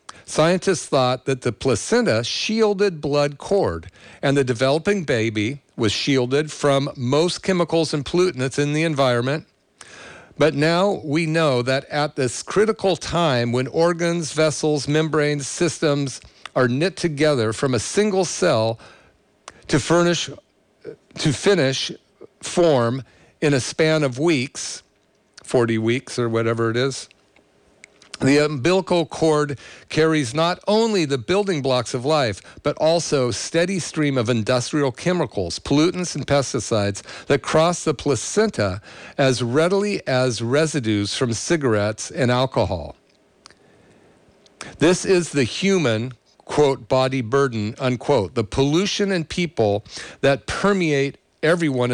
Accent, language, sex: American, English, male